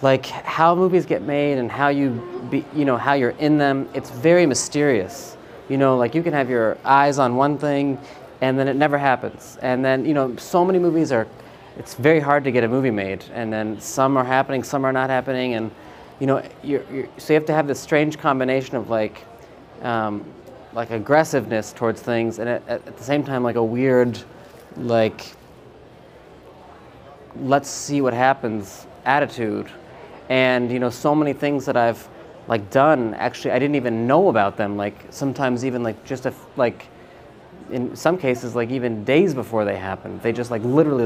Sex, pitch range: male, 115-140 Hz